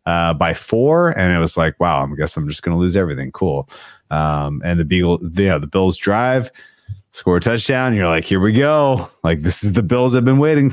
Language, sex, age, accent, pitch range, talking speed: English, male, 30-49, American, 85-110 Hz, 225 wpm